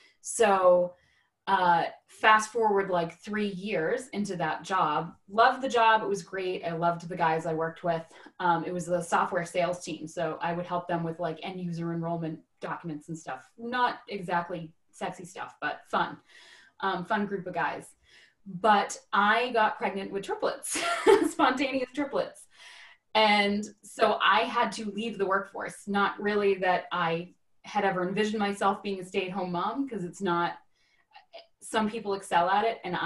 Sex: female